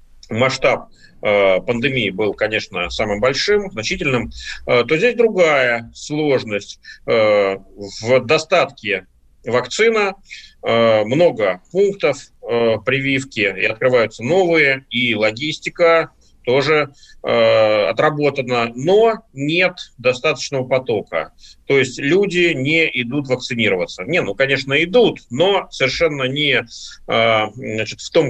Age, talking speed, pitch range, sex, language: 30-49, 105 wpm, 120-160 Hz, male, Russian